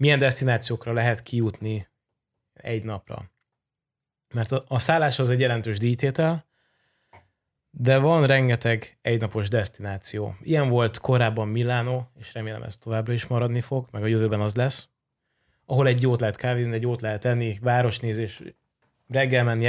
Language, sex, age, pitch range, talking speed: Hungarian, male, 20-39, 110-135 Hz, 145 wpm